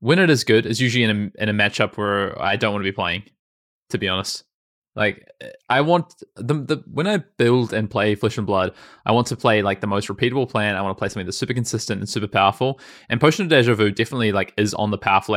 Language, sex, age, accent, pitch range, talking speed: English, male, 20-39, Australian, 100-125 Hz, 255 wpm